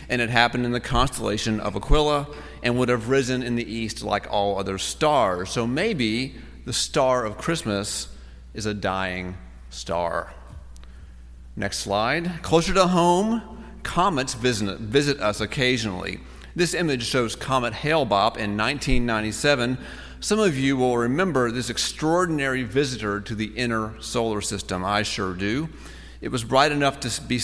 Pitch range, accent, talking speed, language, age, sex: 100-135 Hz, American, 145 wpm, English, 40-59, male